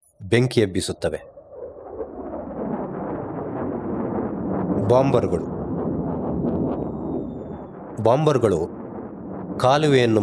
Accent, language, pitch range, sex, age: native, Kannada, 105-145 Hz, male, 30-49